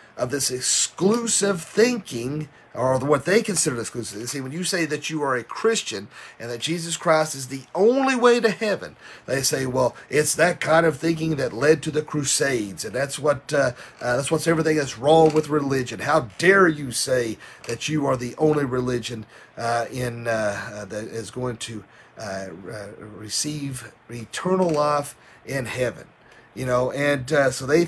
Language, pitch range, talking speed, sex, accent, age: English, 120-170 Hz, 180 wpm, male, American, 40-59